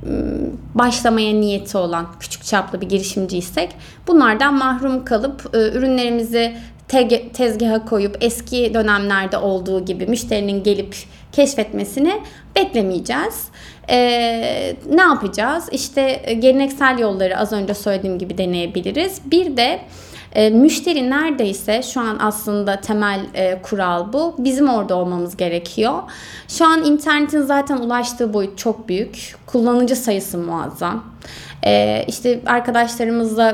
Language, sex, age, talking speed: Turkish, female, 30-49, 110 wpm